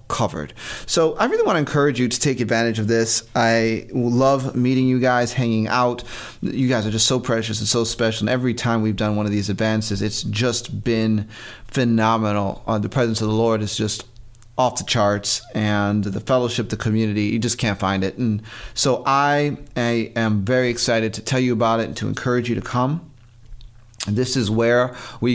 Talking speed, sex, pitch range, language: 205 wpm, male, 110-130 Hz, English